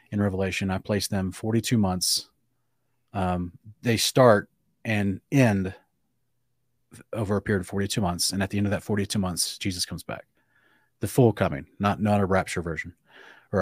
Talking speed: 170 wpm